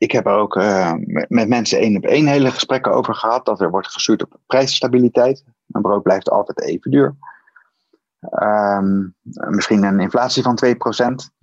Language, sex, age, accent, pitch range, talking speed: Dutch, male, 30-49, Dutch, 105-140 Hz, 170 wpm